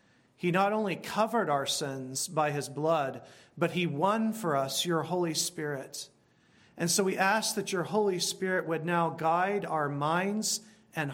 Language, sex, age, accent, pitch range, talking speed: English, male, 40-59, American, 150-195 Hz, 165 wpm